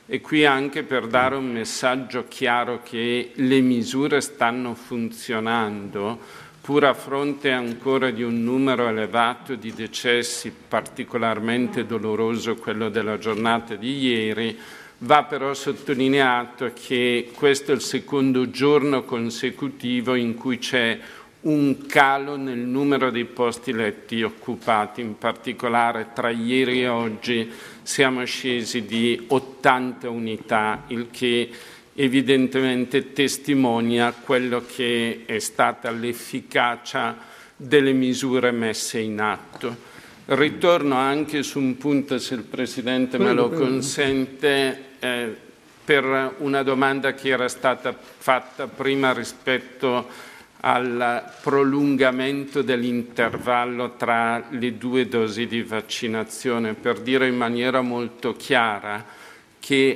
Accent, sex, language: native, male, Italian